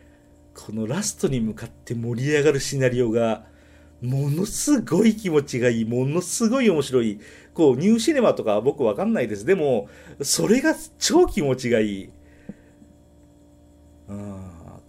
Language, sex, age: Japanese, male, 40-59